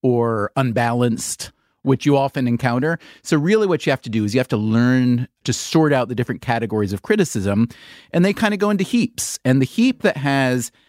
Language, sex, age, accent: English, male, 30-49, American